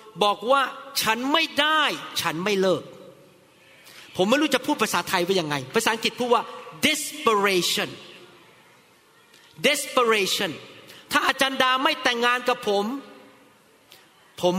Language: Thai